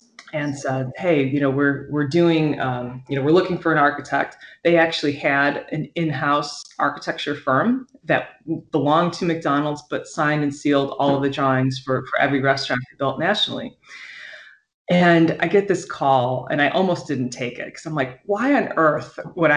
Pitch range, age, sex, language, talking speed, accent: 135-170 Hz, 20-39, female, English, 180 wpm, American